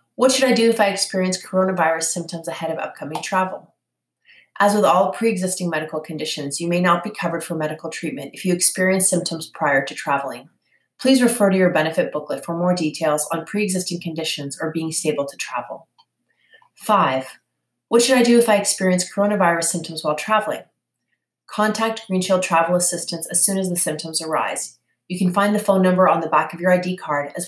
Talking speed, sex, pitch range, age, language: 190 wpm, female, 160-195 Hz, 30-49, English